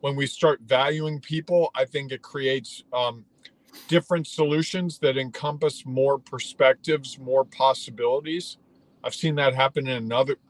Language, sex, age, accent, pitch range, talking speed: English, male, 50-69, American, 135-170 Hz, 135 wpm